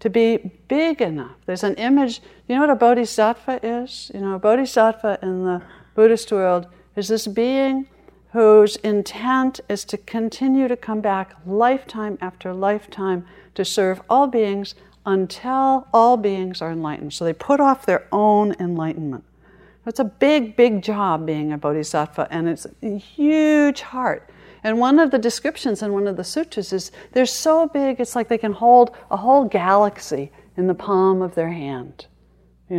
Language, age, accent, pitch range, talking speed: English, 60-79, American, 180-245 Hz, 170 wpm